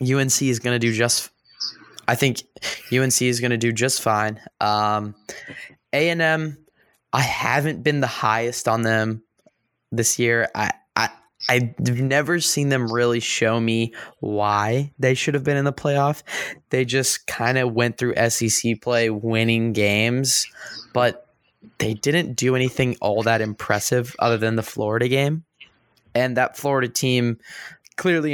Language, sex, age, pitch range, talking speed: English, male, 10-29, 110-130 Hz, 150 wpm